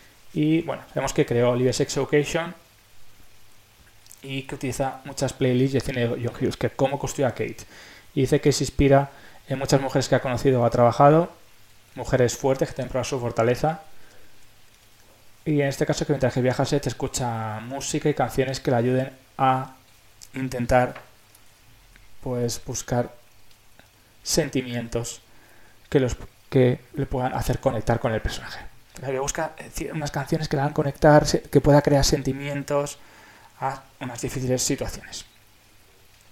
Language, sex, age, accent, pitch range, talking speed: Spanish, male, 20-39, Spanish, 115-140 Hz, 155 wpm